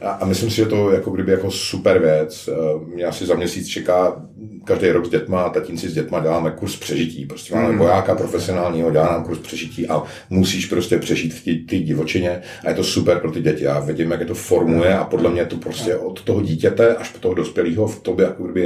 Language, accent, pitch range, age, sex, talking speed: Czech, native, 80-105 Hz, 50-69, male, 220 wpm